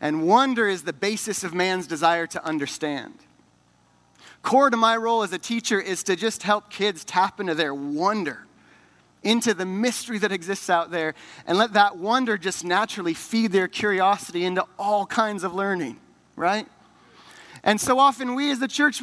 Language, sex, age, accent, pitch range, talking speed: English, male, 30-49, American, 185-245 Hz, 175 wpm